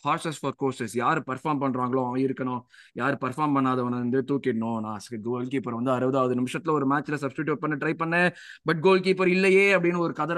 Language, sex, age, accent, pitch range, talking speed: Tamil, male, 20-39, native, 130-155 Hz, 125 wpm